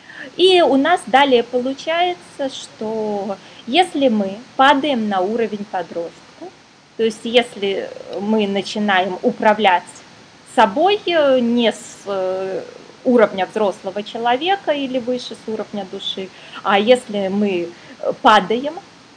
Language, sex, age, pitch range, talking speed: Russian, female, 20-39, 205-275 Hz, 105 wpm